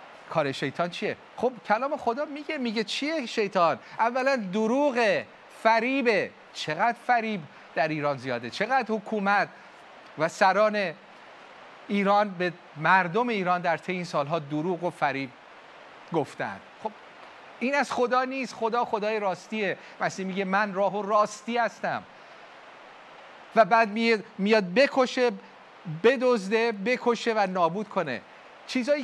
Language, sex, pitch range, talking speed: Persian, male, 180-245 Hz, 120 wpm